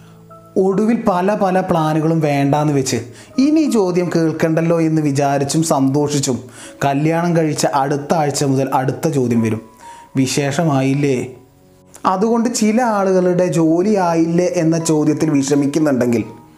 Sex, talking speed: male, 105 wpm